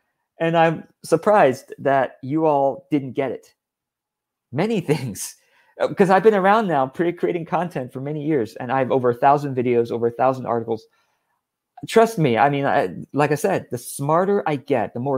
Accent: American